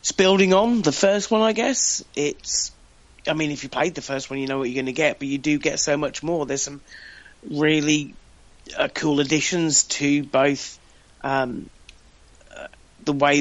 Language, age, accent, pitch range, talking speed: English, 30-49, British, 130-160 Hz, 190 wpm